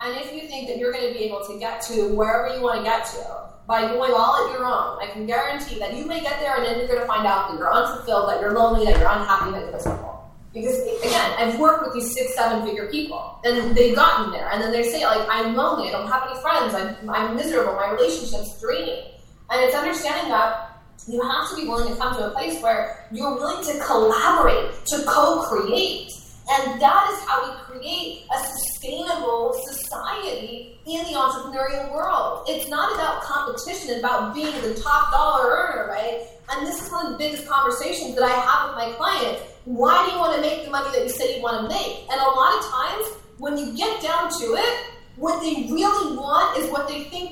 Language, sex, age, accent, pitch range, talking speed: English, female, 20-39, American, 230-325 Hz, 225 wpm